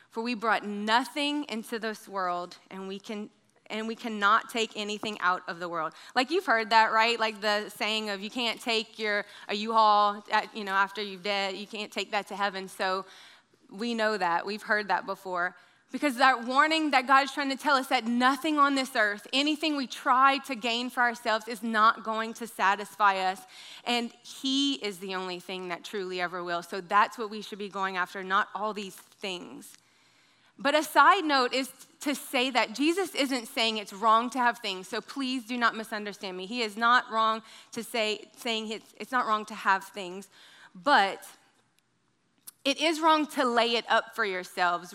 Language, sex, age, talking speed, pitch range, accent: English, female, 20-39, 200 wpm, 195-245 Hz, American